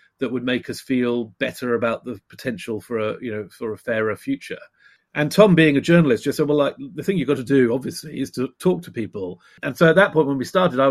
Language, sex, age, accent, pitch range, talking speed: English, male, 40-59, British, 115-145 Hz, 260 wpm